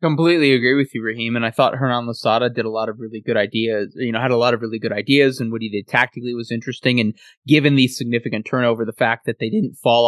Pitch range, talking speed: 115-125 Hz, 260 wpm